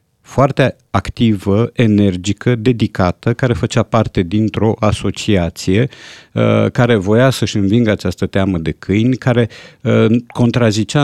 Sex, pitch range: male, 95-130 Hz